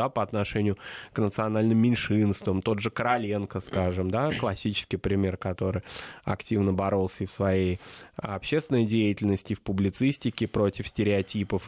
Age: 20-39